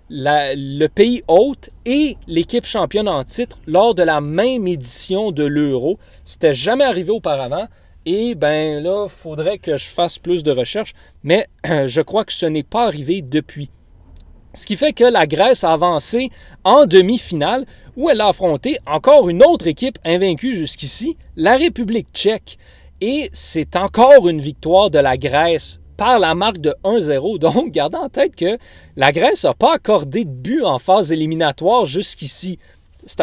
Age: 30-49